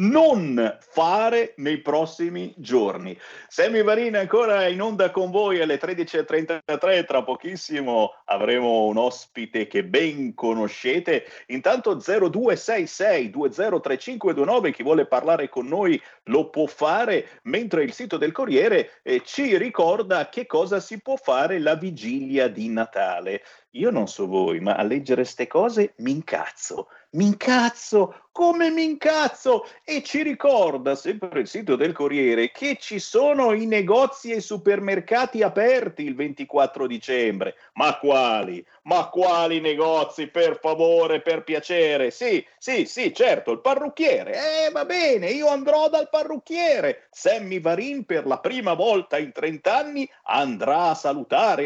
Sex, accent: male, native